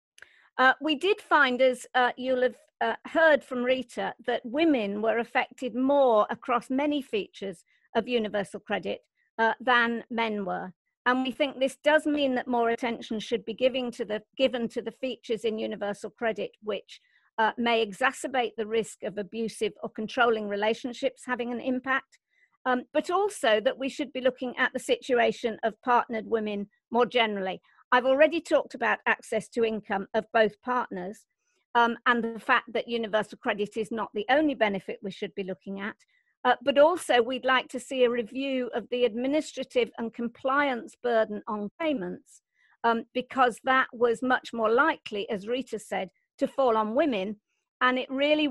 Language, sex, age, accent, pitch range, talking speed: English, female, 50-69, British, 220-260 Hz, 170 wpm